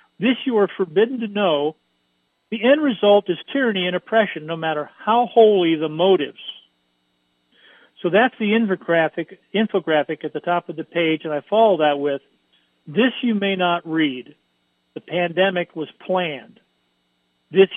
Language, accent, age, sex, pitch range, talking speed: English, American, 50-69, male, 150-210 Hz, 150 wpm